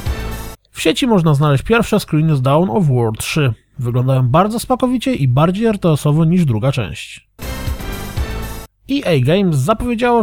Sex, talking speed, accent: male, 135 wpm, native